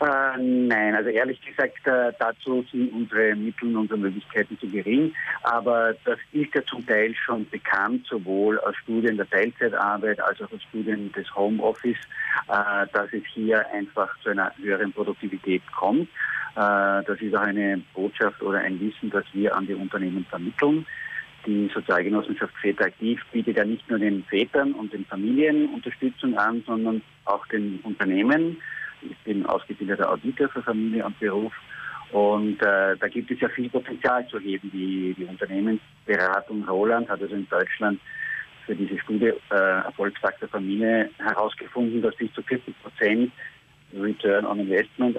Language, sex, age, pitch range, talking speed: German, male, 50-69, 100-125 Hz, 155 wpm